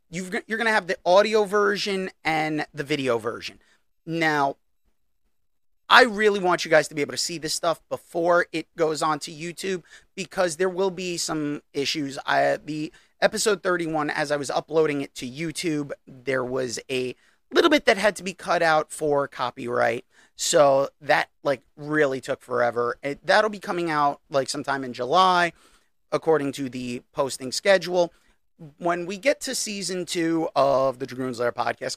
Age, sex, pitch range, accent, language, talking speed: 30-49, male, 135-180 Hz, American, English, 165 wpm